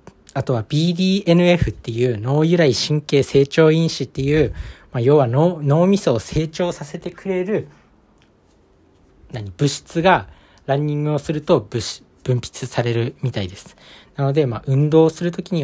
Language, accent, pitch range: Japanese, native, 105-160 Hz